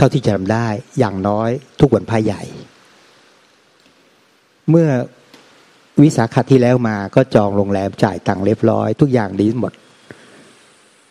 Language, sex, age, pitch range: Thai, male, 60-79, 100-120 Hz